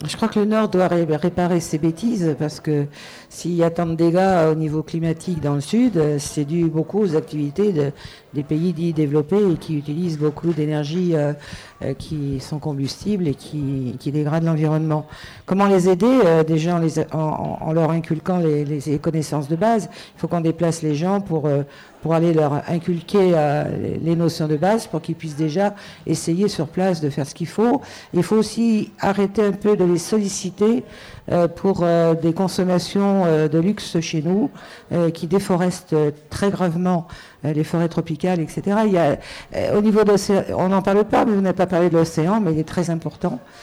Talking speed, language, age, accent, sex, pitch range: 180 wpm, French, 50-69, French, female, 155-185 Hz